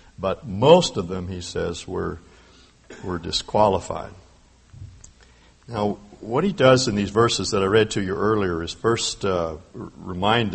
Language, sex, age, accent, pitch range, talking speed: English, male, 60-79, American, 85-115 Hz, 150 wpm